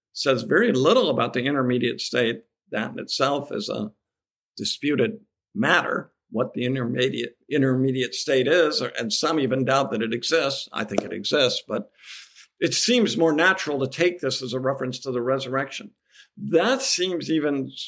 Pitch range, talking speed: 130-155 Hz, 160 wpm